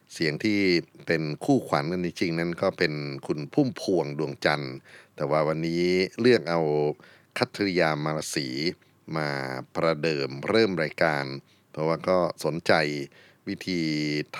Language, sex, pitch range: Thai, male, 75-95 Hz